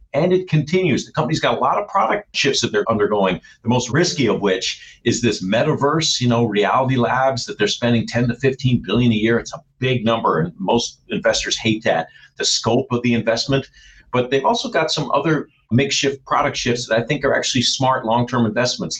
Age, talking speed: 50-69, 210 wpm